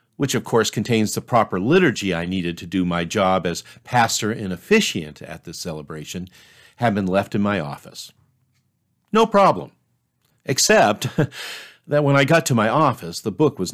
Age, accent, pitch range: 50-69, American, 100-150 Hz